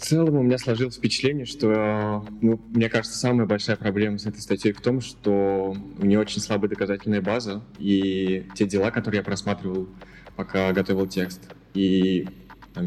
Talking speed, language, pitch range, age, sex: 170 wpm, Russian, 95-105 Hz, 20-39, male